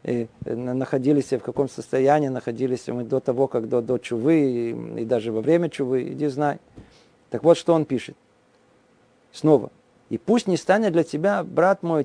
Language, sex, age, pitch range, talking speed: Russian, male, 50-69, 135-180 Hz, 170 wpm